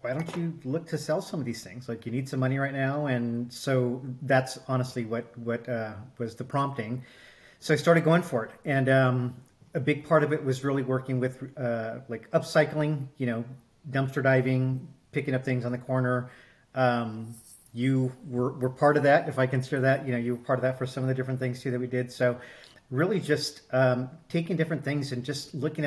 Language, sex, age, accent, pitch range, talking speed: English, male, 40-59, American, 125-140 Hz, 220 wpm